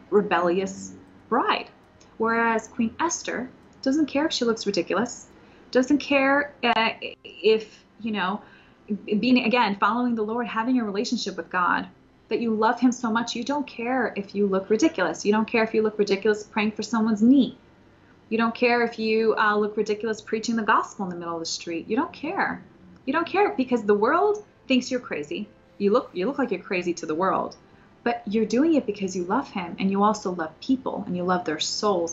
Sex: female